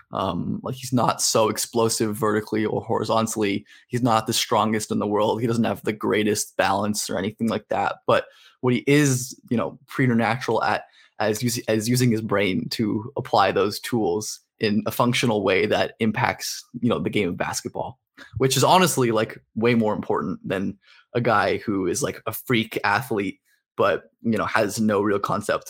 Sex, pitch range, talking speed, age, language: male, 110-120 Hz, 185 wpm, 20-39, English